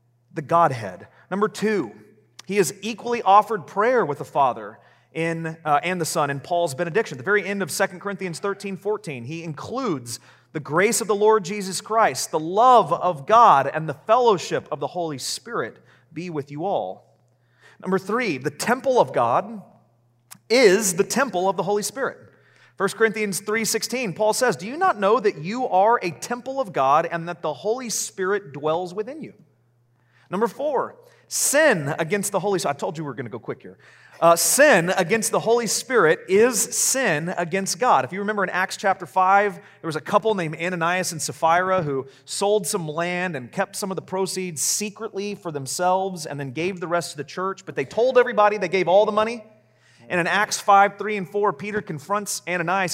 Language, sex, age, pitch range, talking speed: English, male, 30-49, 160-215 Hz, 195 wpm